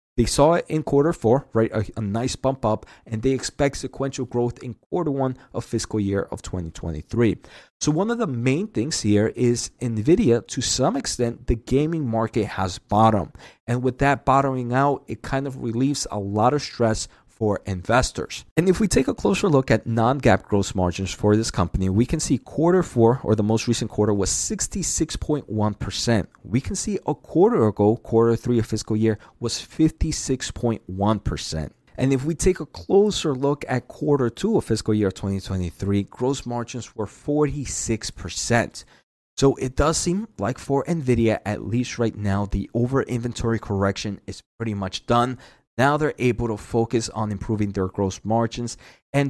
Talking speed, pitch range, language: 175 wpm, 105-130 Hz, English